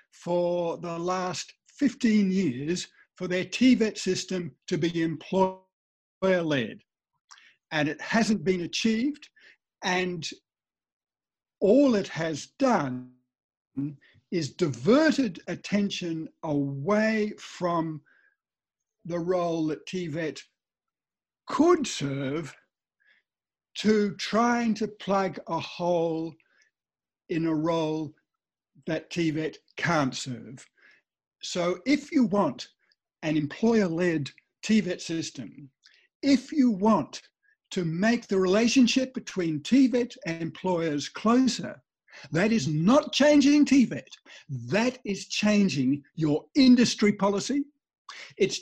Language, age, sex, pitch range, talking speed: English, 60-79, male, 160-225 Hz, 95 wpm